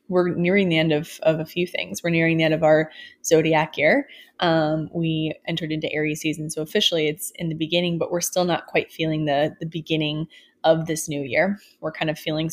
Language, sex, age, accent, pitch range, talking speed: English, female, 20-39, American, 160-180 Hz, 220 wpm